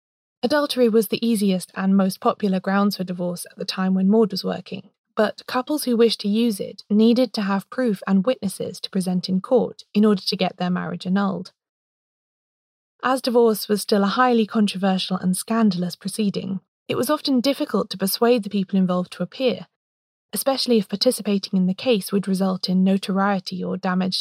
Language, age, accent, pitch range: English, 20-39, British, 185-230 Hz